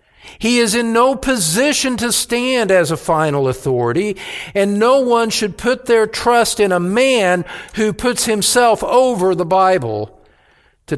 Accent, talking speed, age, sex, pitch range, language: American, 155 wpm, 50-69, male, 100-150 Hz, English